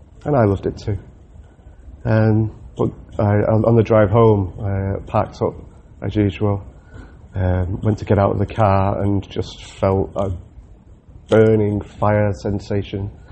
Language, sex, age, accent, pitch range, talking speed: English, male, 30-49, British, 90-105 Hz, 145 wpm